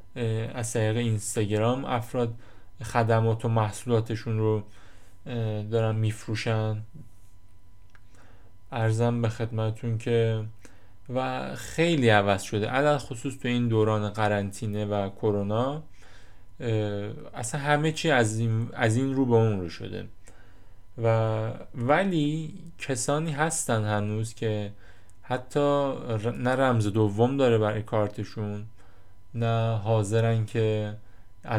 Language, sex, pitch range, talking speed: Persian, male, 105-120 Hz, 95 wpm